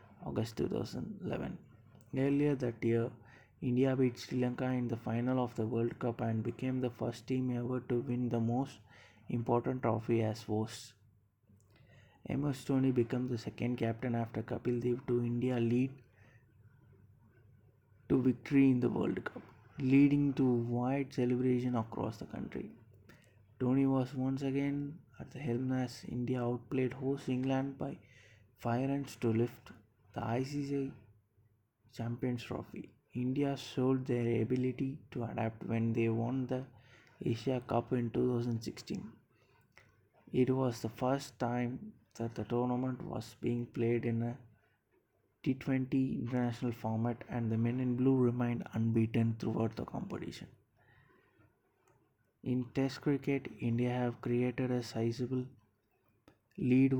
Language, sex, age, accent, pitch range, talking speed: English, male, 20-39, Indian, 115-130 Hz, 130 wpm